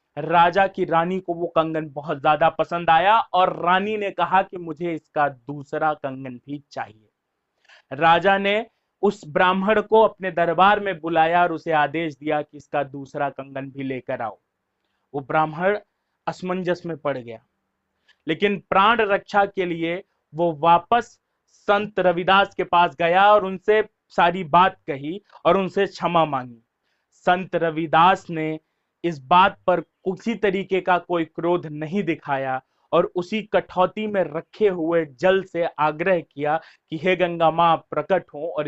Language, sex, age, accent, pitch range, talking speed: Hindi, male, 30-49, native, 155-190 Hz, 155 wpm